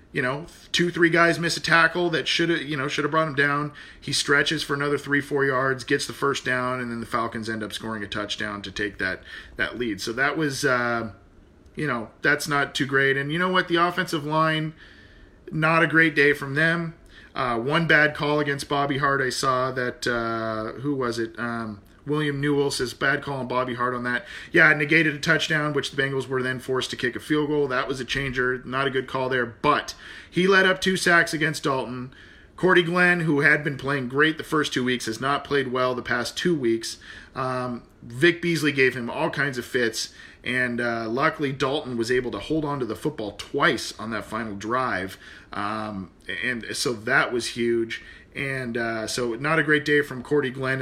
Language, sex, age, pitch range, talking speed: English, male, 40-59, 120-150 Hz, 215 wpm